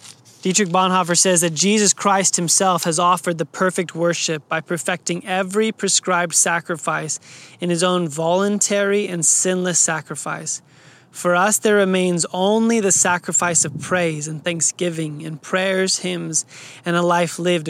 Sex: male